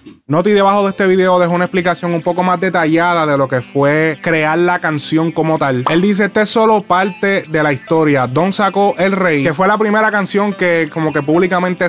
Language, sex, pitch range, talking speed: Spanish, male, 155-185 Hz, 215 wpm